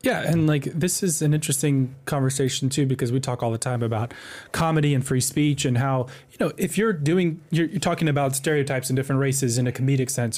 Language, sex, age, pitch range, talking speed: English, male, 20-39, 130-160 Hz, 225 wpm